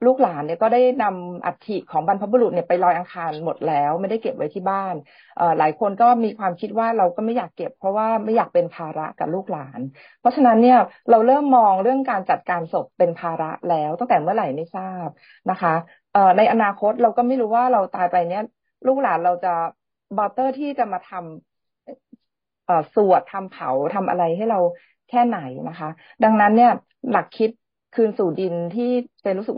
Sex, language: female, Thai